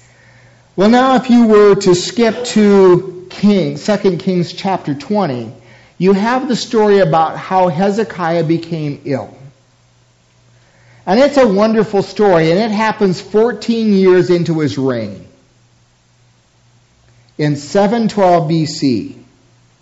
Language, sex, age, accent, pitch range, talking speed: English, male, 50-69, American, 155-215 Hz, 115 wpm